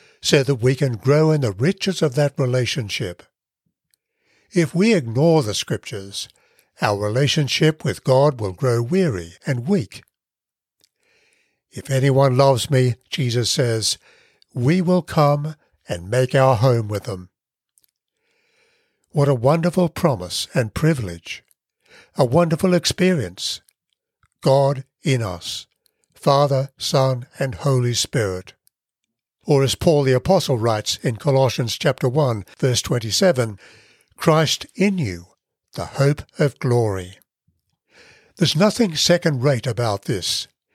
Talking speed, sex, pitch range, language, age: 120 wpm, male, 115-160 Hz, English, 60-79